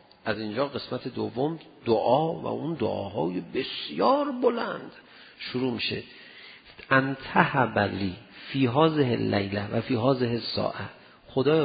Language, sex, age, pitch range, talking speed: Persian, male, 50-69, 130-220 Hz, 105 wpm